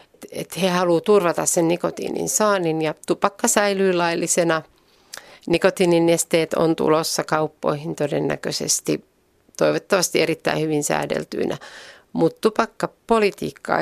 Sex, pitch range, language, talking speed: female, 155-210 Hz, Finnish, 100 wpm